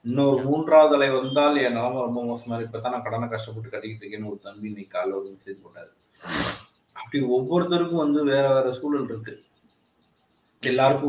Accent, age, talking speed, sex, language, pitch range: native, 30-49, 160 wpm, male, Tamil, 110-130 Hz